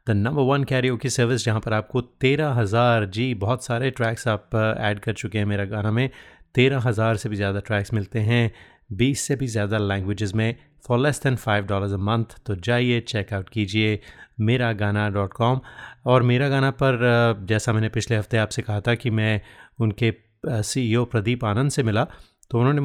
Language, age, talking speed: Hindi, 30-49, 180 wpm